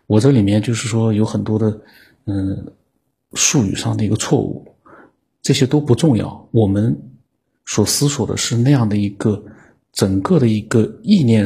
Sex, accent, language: male, native, Chinese